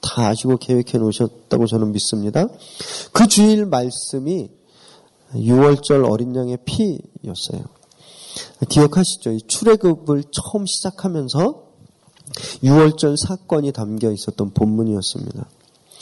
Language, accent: Korean, native